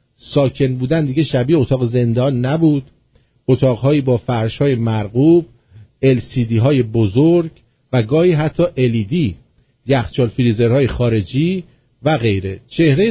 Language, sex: English, male